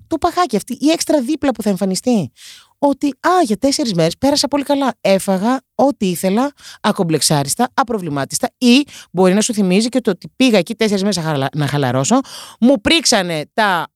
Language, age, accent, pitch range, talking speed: Greek, 30-49, native, 180-285 Hz, 170 wpm